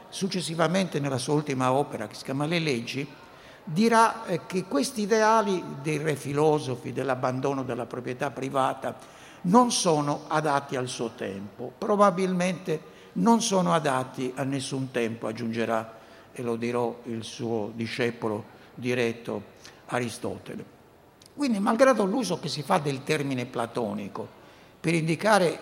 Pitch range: 125-180 Hz